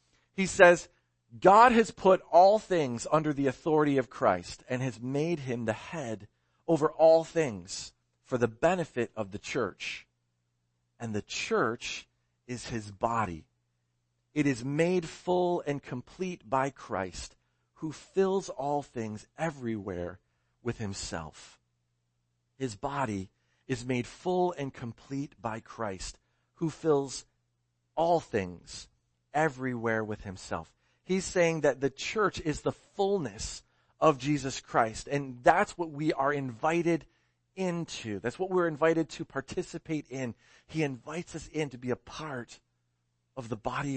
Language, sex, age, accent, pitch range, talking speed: English, male, 40-59, American, 100-160 Hz, 135 wpm